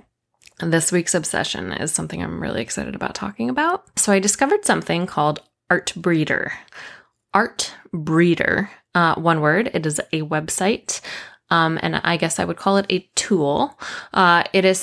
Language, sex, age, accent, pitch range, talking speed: English, female, 20-39, American, 155-195 Hz, 165 wpm